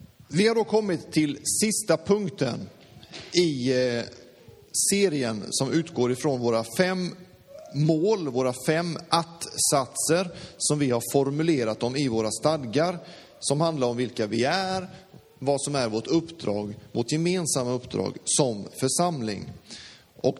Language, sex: Swedish, male